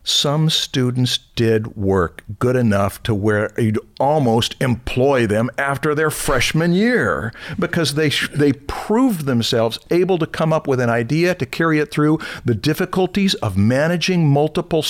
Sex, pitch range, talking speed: male, 115-155 Hz, 155 wpm